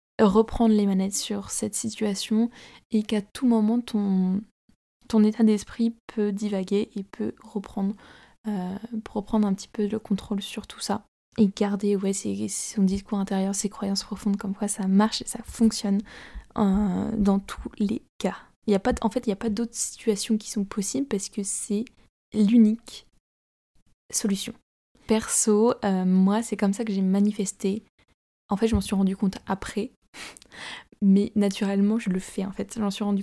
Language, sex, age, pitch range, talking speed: French, female, 20-39, 195-220 Hz, 175 wpm